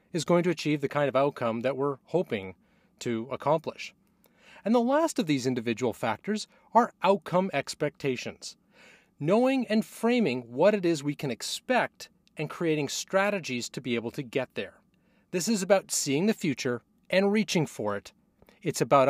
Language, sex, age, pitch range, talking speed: English, male, 30-49, 135-205 Hz, 165 wpm